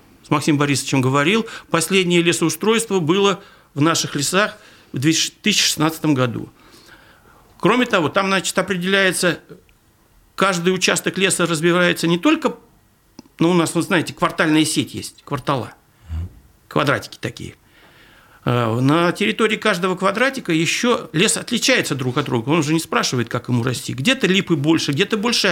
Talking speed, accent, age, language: 135 wpm, native, 50-69, Russian